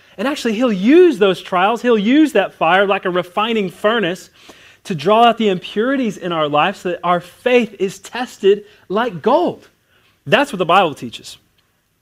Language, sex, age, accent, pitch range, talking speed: English, male, 30-49, American, 170-230 Hz, 175 wpm